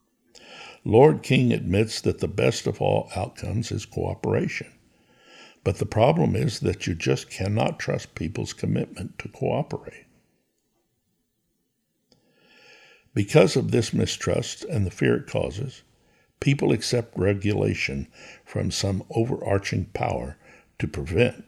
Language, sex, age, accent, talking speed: English, male, 60-79, American, 115 wpm